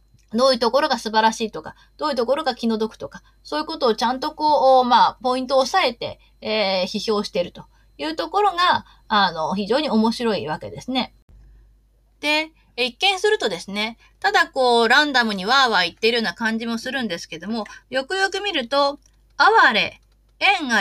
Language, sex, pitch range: Japanese, female, 220-310 Hz